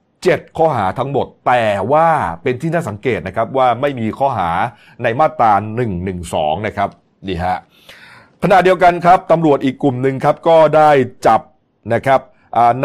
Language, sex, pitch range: Thai, male, 115-150 Hz